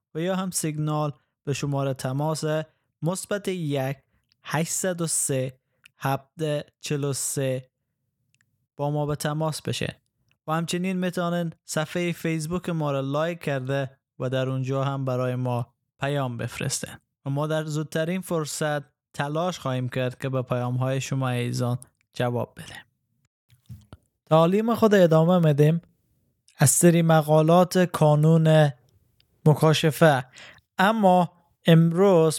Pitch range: 135-165 Hz